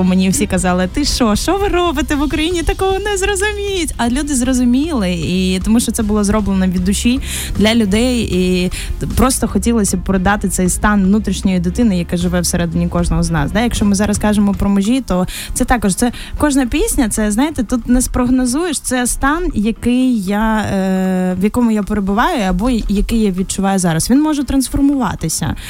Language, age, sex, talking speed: Ukrainian, 10-29, female, 175 wpm